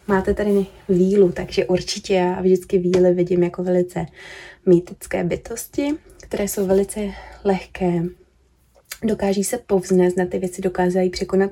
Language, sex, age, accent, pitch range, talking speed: Czech, female, 20-39, native, 180-195 Hz, 130 wpm